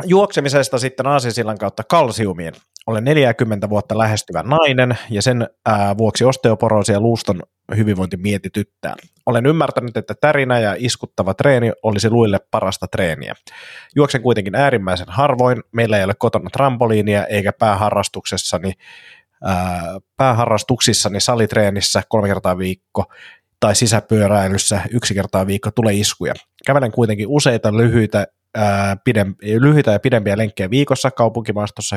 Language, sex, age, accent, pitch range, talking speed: Finnish, male, 30-49, native, 105-125 Hz, 120 wpm